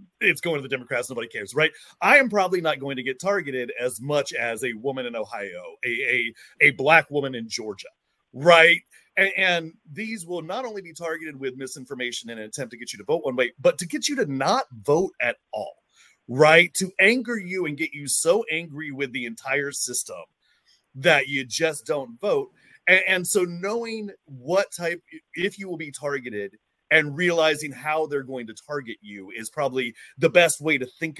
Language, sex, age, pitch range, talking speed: English, male, 30-49, 125-180 Hz, 200 wpm